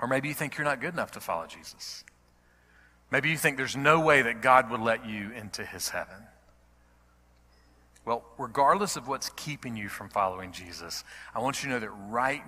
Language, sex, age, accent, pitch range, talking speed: English, male, 40-59, American, 90-130 Hz, 195 wpm